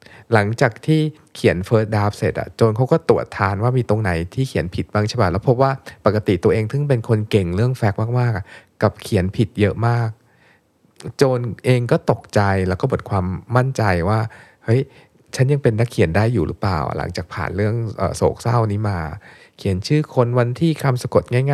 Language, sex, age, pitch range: Thai, male, 20-39, 100-125 Hz